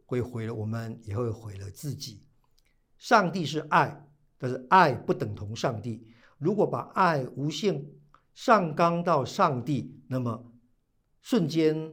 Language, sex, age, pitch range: Chinese, male, 50-69, 125-170 Hz